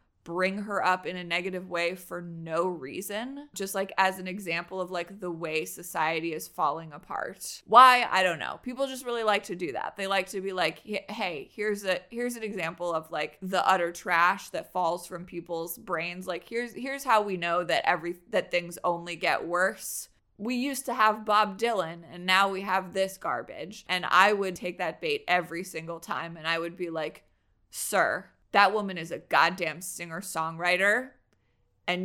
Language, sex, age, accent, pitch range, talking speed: English, female, 20-39, American, 175-210 Hz, 190 wpm